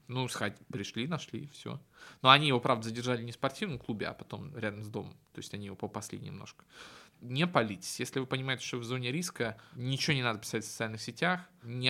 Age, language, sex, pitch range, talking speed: 20-39, Russian, male, 110-135 Hz, 210 wpm